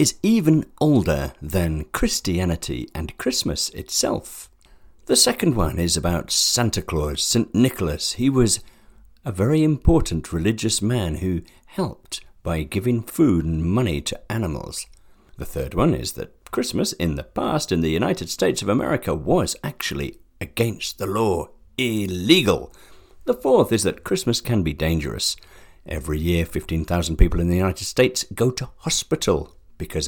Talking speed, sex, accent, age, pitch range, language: 150 wpm, male, British, 50-69, 80-115 Hz, English